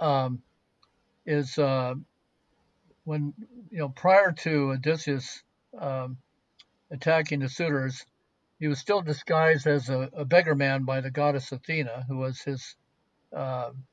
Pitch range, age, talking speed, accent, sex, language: 135-160 Hz, 60-79, 130 wpm, American, male, English